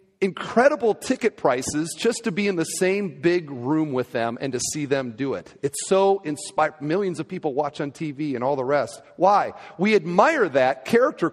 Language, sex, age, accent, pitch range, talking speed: English, male, 40-59, American, 170-245 Hz, 195 wpm